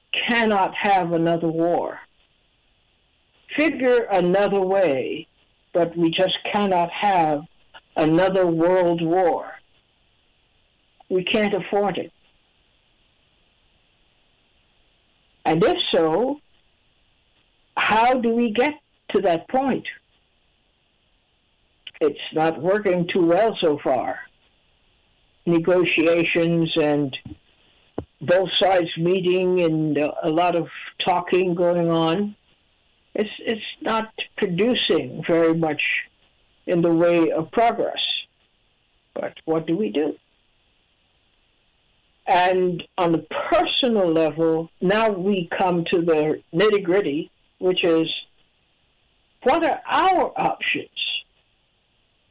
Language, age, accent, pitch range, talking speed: English, 60-79, American, 165-210 Hz, 95 wpm